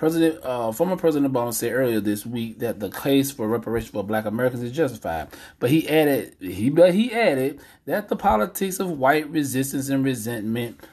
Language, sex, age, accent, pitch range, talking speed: English, male, 30-49, American, 110-140 Hz, 185 wpm